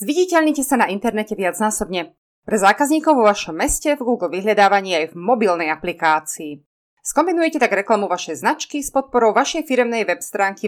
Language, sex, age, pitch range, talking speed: Slovak, female, 30-49, 180-255 Hz, 155 wpm